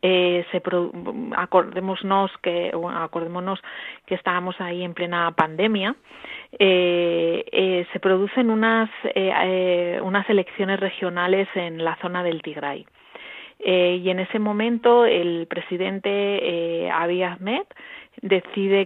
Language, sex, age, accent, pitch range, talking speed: Spanish, female, 30-49, Spanish, 170-195 Hz, 120 wpm